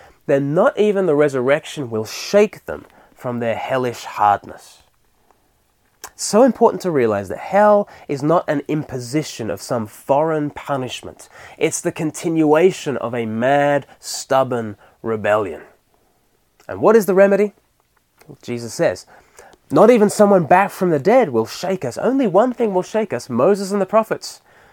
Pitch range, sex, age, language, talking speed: 140-200 Hz, male, 20-39, English, 155 wpm